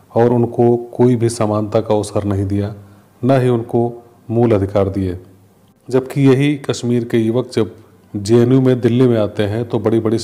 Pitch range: 105-120 Hz